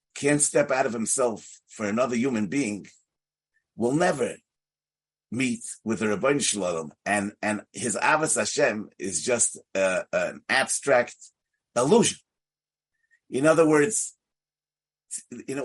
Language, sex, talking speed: English, male, 120 wpm